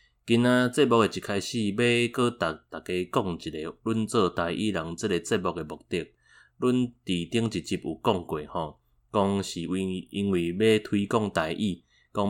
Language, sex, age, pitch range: Chinese, male, 30-49, 90-110 Hz